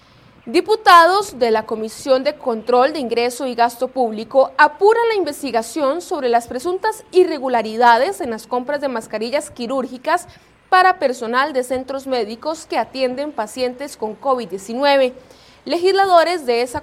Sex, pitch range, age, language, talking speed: female, 235-320 Hz, 30-49, Spanish, 130 wpm